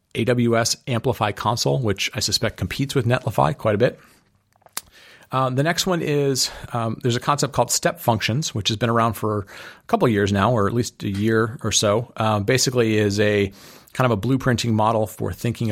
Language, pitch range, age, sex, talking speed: English, 100-120 Hz, 40-59, male, 195 wpm